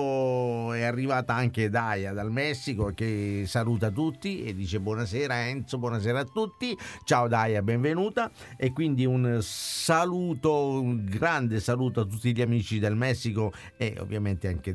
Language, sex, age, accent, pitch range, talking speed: Italian, male, 50-69, native, 105-135 Hz, 140 wpm